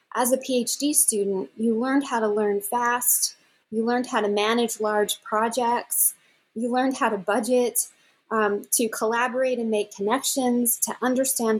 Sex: female